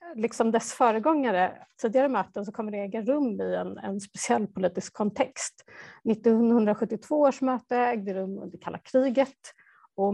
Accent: Swedish